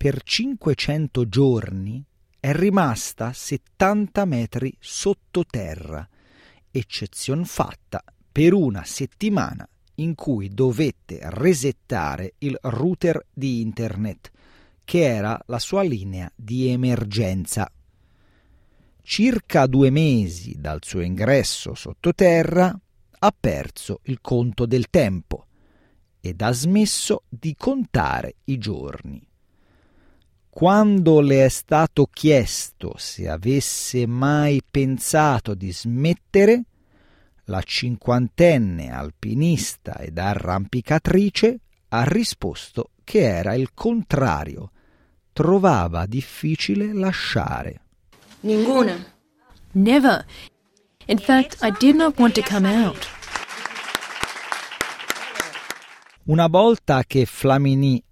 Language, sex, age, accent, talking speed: Italian, male, 40-59, native, 90 wpm